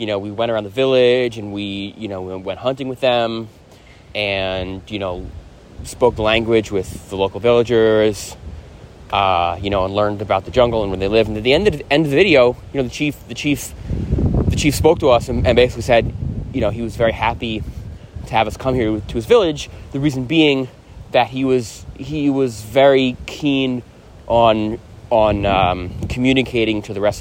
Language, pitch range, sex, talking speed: English, 95-120 Hz, male, 205 wpm